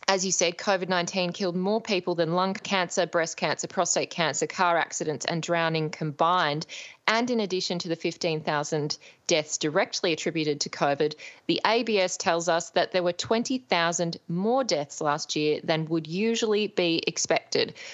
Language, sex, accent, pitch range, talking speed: English, female, Australian, 165-205 Hz, 155 wpm